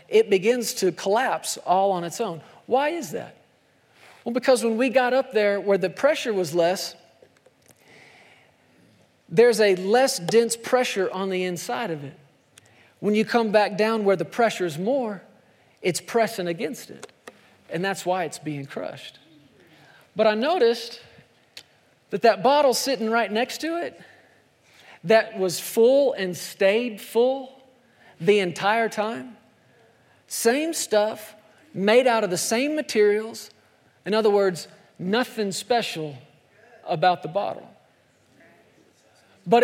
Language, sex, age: English, male, 40-59